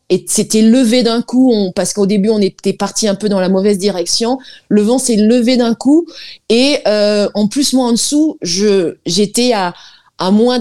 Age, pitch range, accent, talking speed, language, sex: 20-39, 190-230 Hz, French, 190 wpm, French, female